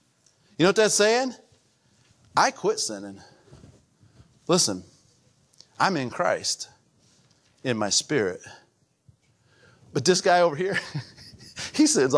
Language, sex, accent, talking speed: English, male, American, 110 wpm